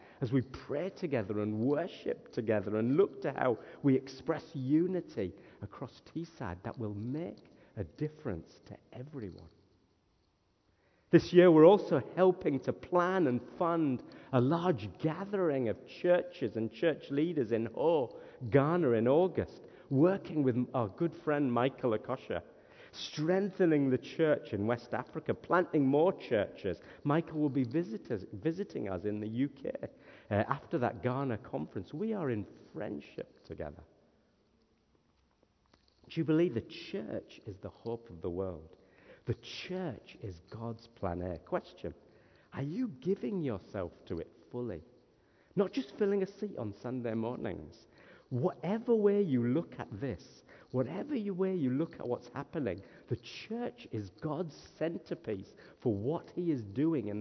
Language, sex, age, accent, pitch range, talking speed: English, male, 50-69, British, 110-170 Hz, 145 wpm